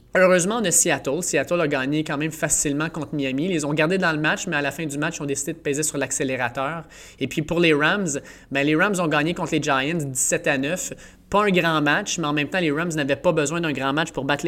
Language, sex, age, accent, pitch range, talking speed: French, male, 20-39, Canadian, 140-165 Hz, 275 wpm